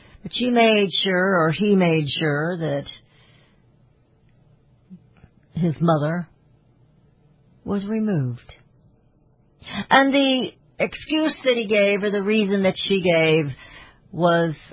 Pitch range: 125-180 Hz